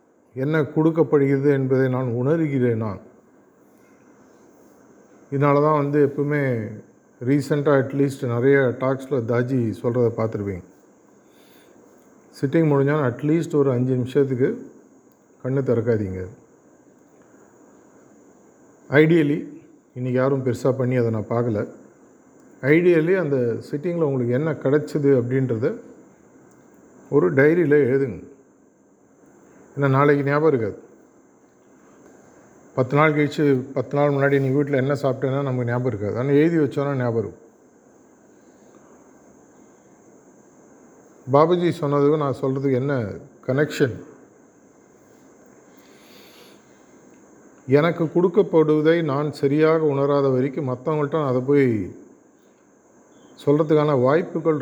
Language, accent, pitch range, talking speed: Tamil, native, 125-150 Hz, 90 wpm